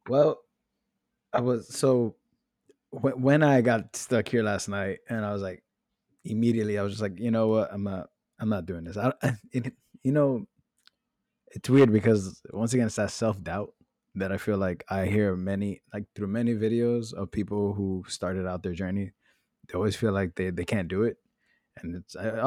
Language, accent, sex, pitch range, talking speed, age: English, American, male, 95-115 Hz, 190 wpm, 20-39